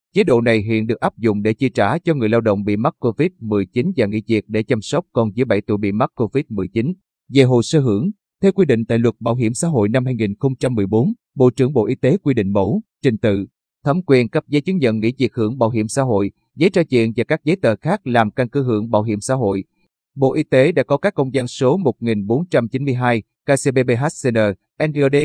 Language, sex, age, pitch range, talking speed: Vietnamese, male, 20-39, 110-145 Hz, 230 wpm